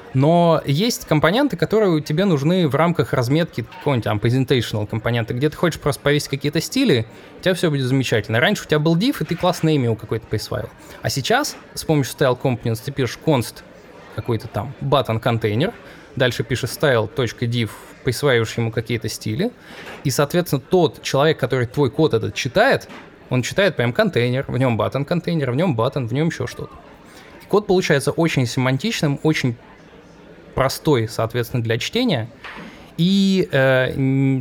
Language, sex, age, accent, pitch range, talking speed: Russian, male, 20-39, native, 120-155 Hz, 155 wpm